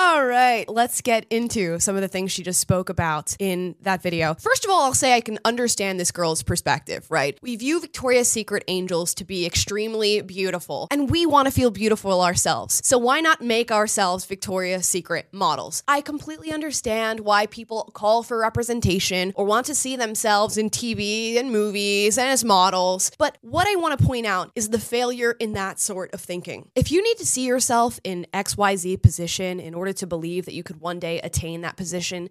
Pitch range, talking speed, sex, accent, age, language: 185-265 Hz, 205 wpm, female, American, 20-39, English